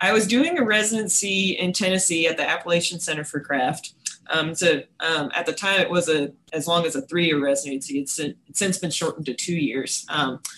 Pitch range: 150-180 Hz